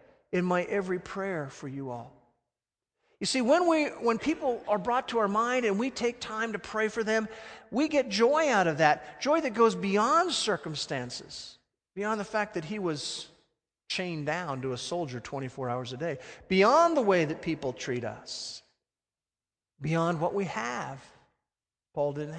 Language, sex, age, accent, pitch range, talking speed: English, male, 50-69, American, 130-200 Hz, 175 wpm